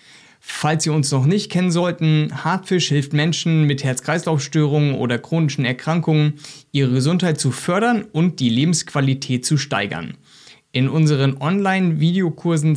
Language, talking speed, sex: German, 125 wpm, male